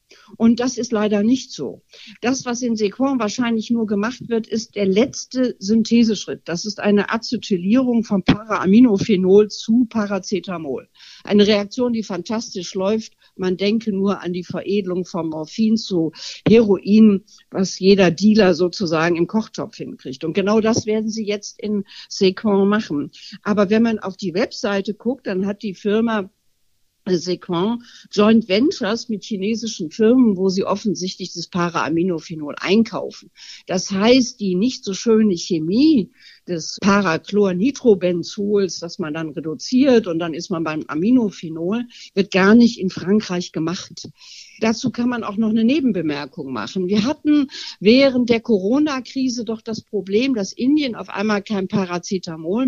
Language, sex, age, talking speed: German, female, 60-79, 145 wpm